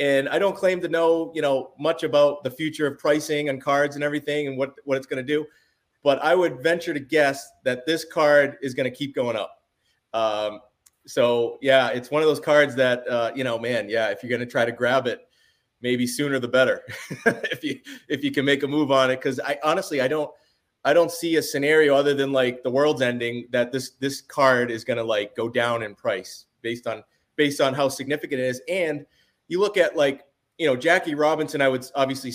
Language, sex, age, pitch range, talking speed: English, male, 30-49, 125-150 Hz, 230 wpm